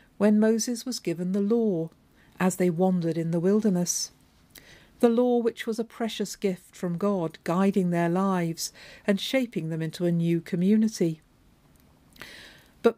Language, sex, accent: English, female, British